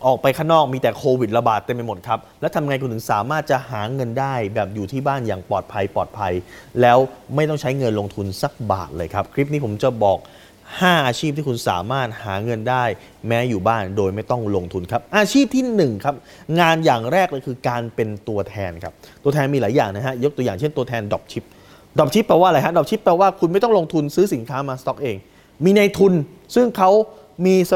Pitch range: 115-160 Hz